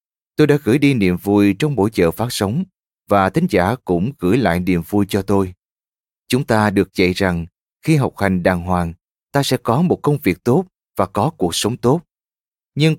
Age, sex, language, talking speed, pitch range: 20-39, male, Vietnamese, 205 wpm, 90-135 Hz